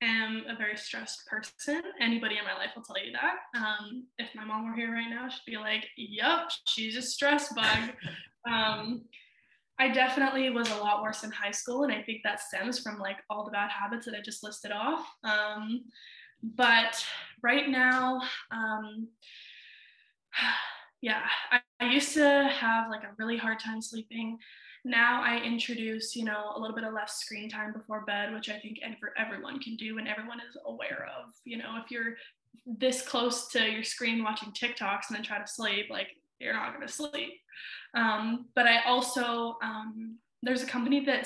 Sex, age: female, 10-29